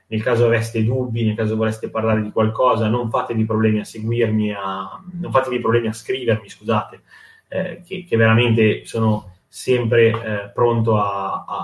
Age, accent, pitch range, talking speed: 20-39, native, 110-115 Hz, 165 wpm